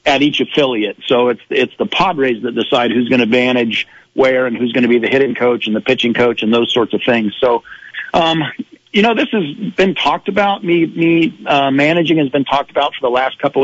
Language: English